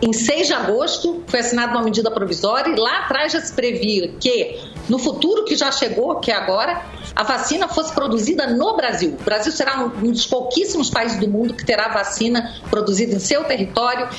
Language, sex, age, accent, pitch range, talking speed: Portuguese, female, 50-69, Brazilian, 220-295 Hz, 195 wpm